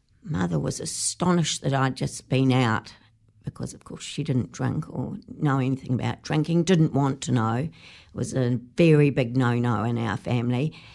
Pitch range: 125-165 Hz